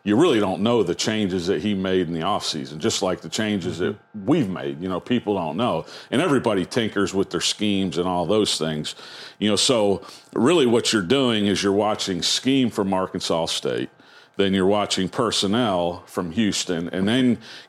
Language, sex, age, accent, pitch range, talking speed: English, male, 50-69, American, 90-110 Hz, 195 wpm